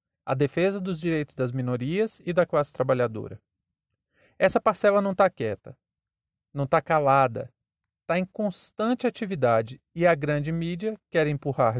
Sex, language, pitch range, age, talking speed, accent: male, Portuguese, 145-195 Hz, 40-59, 140 wpm, Brazilian